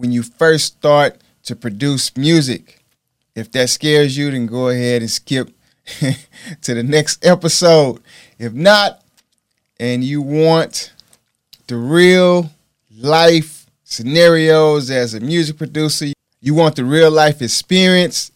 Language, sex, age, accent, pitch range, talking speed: English, male, 30-49, American, 130-165 Hz, 125 wpm